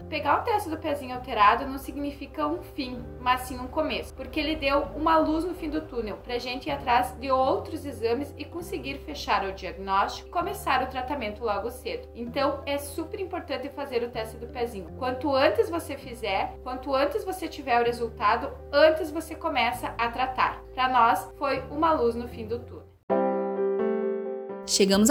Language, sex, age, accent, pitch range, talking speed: Portuguese, female, 20-39, Brazilian, 205-300 Hz, 180 wpm